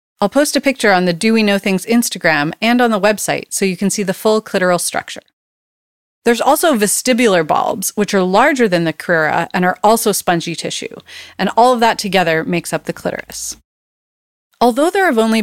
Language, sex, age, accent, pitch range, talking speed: English, female, 30-49, American, 175-230 Hz, 200 wpm